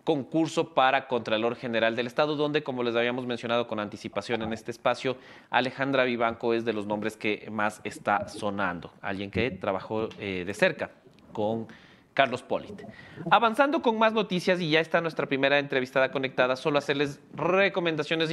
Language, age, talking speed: English, 30-49, 160 wpm